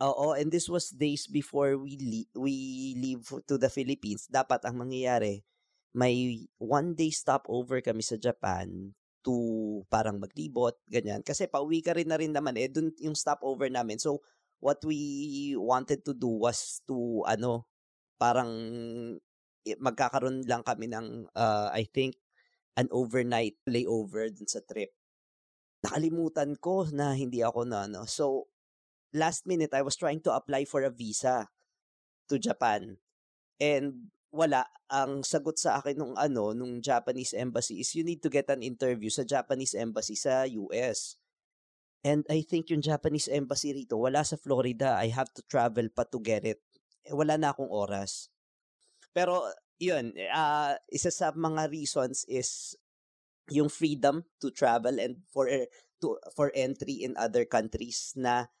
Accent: Filipino